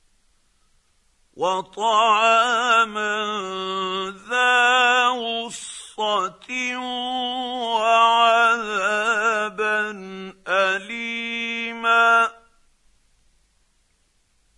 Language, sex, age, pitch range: Arabic, male, 50-69, 190-230 Hz